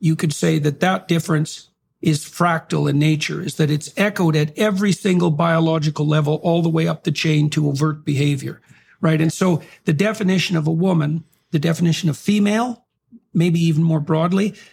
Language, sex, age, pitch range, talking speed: English, male, 50-69, 155-185 Hz, 180 wpm